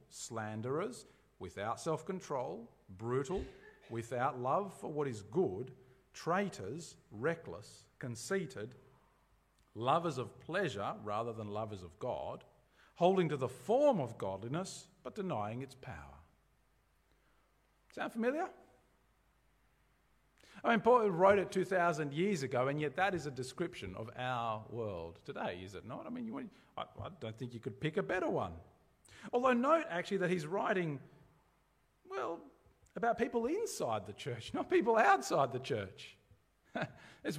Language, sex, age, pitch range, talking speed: English, male, 50-69, 120-190 Hz, 140 wpm